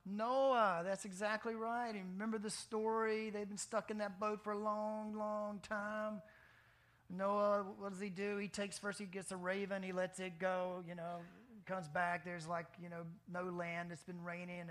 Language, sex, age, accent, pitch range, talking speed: English, male, 40-59, American, 160-205 Hz, 190 wpm